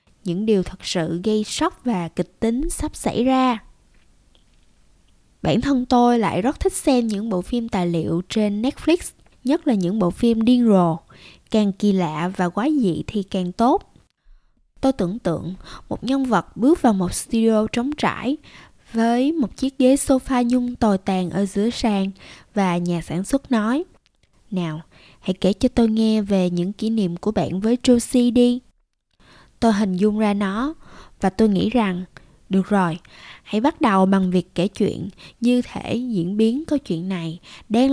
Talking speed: 175 wpm